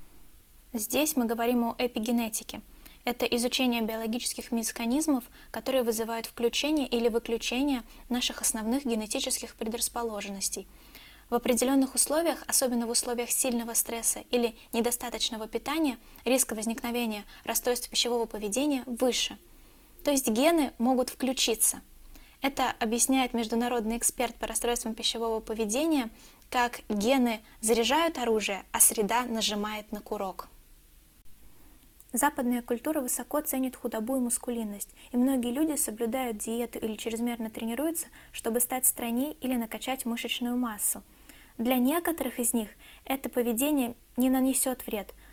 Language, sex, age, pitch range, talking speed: Russian, female, 10-29, 230-260 Hz, 115 wpm